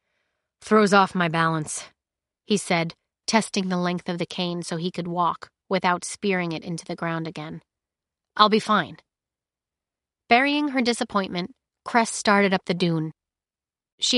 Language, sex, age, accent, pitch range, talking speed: English, female, 30-49, American, 145-210 Hz, 150 wpm